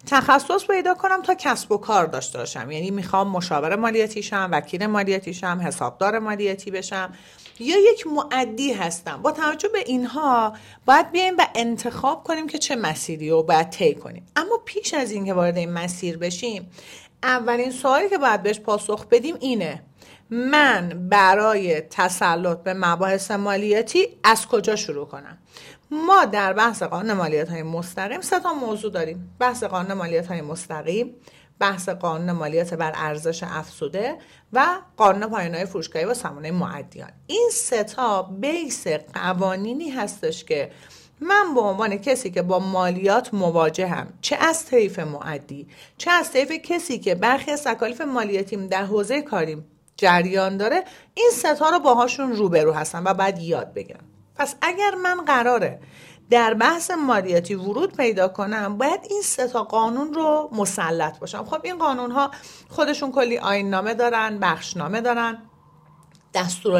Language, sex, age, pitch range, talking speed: Persian, female, 40-59, 180-275 Hz, 155 wpm